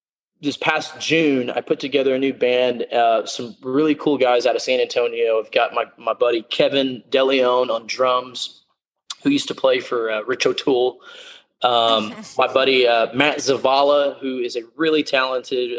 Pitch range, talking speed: 120-145 Hz, 175 wpm